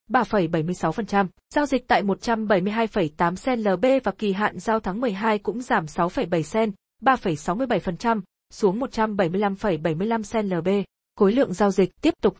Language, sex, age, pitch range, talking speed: Vietnamese, female, 20-39, 195-230 Hz, 135 wpm